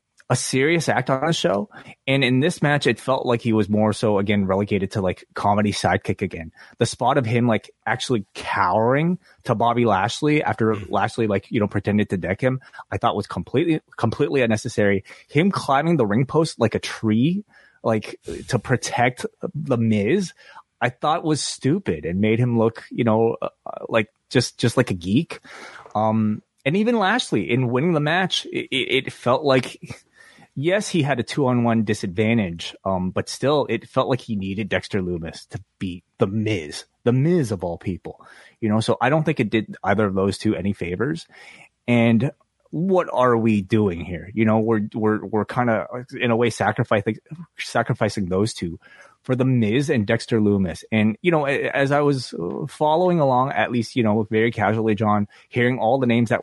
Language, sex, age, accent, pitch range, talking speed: English, male, 20-39, American, 105-135 Hz, 185 wpm